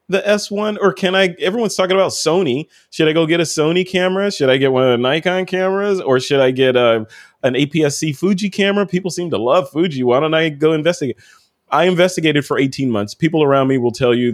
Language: English